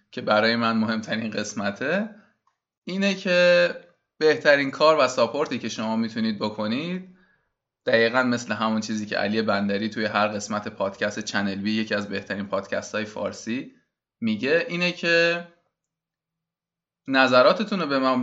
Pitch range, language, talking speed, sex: 110-150 Hz, Persian, 135 wpm, male